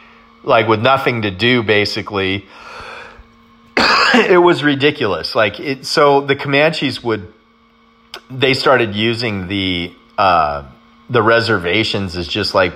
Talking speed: 120 wpm